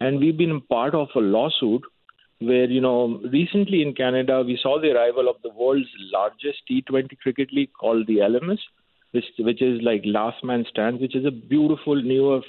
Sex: male